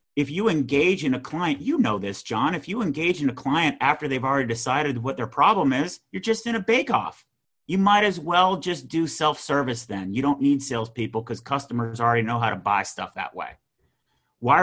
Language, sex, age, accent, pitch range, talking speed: English, male, 30-49, American, 125-165 Hz, 215 wpm